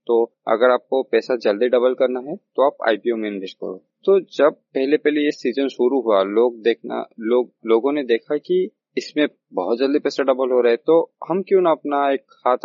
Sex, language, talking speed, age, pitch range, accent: male, Hindi, 210 wpm, 20-39, 120-155 Hz, native